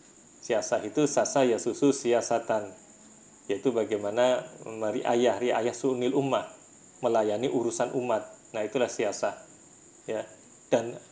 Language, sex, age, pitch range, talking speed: Indonesian, male, 30-49, 110-135 Hz, 110 wpm